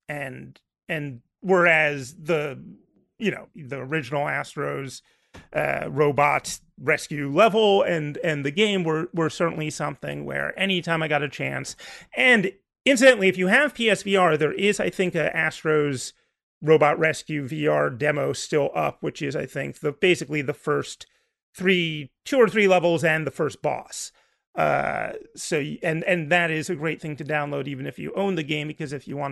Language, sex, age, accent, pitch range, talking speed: English, male, 30-49, American, 145-180 Hz, 170 wpm